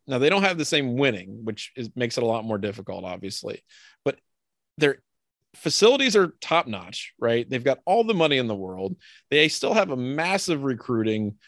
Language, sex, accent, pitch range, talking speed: English, male, American, 120-165 Hz, 195 wpm